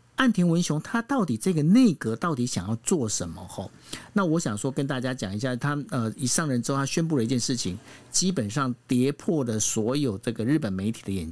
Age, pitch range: 50-69, 115-175 Hz